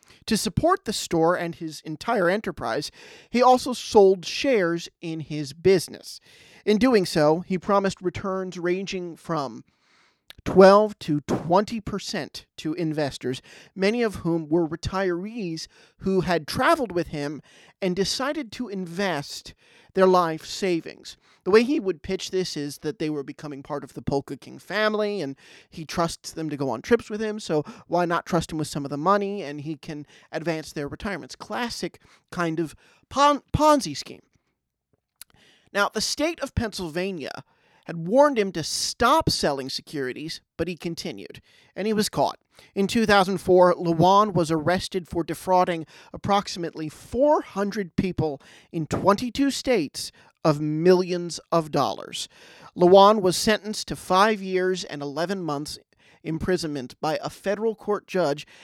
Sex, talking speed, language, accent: male, 150 wpm, English, American